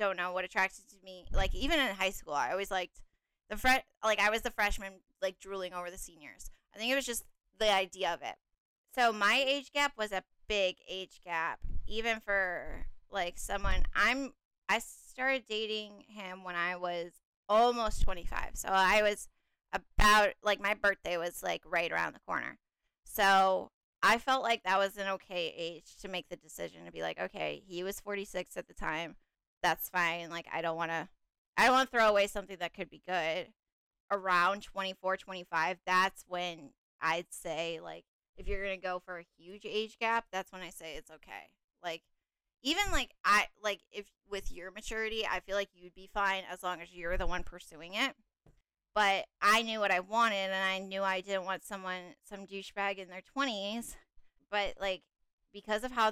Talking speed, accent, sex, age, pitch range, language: 195 wpm, American, female, 10-29, 180-215 Hz, English